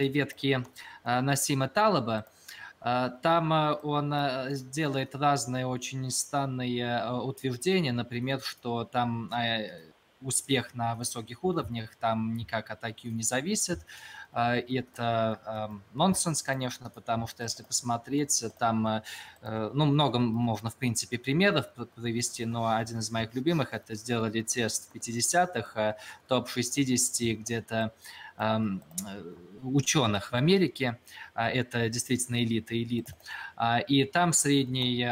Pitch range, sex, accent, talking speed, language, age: 115-130 Hz, male, native, 105 wpm, Russian, 20-39